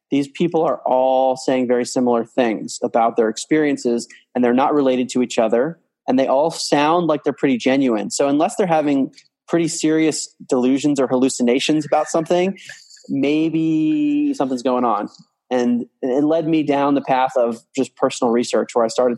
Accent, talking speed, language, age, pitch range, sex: American, 170 wpm, English, 20-39, 120-140 Hz, male